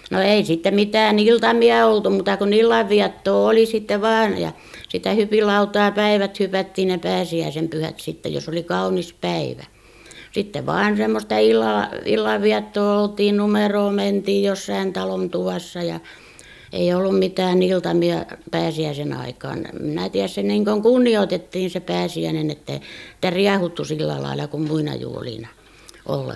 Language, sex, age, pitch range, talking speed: Finnish, female, 60-79, 155-205 Hz, 130 wpm